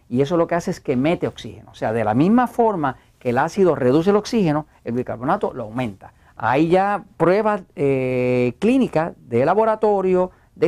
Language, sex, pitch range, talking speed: Spanish, male, 125-180 Hz, 185 wpm